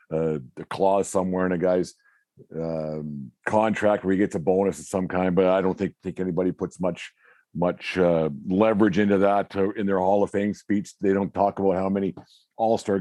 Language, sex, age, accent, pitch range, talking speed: English, male, 50-69, American, 95-110 Hz, 205 wpm